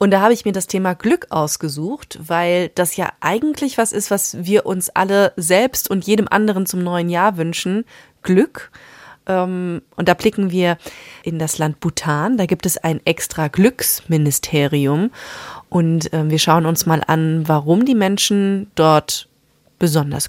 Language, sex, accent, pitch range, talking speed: German, female, German, 160-210 Hz, 155 wpm